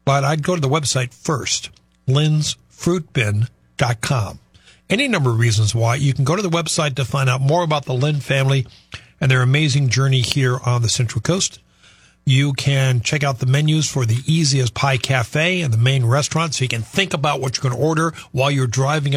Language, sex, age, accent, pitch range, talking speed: English, male, 50-69, American, 125-155 Hz, 200 wpm